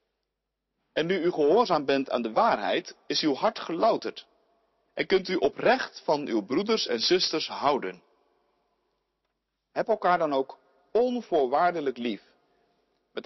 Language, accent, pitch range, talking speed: Dutch, Dutch, 140-230 Hz, 130 wpm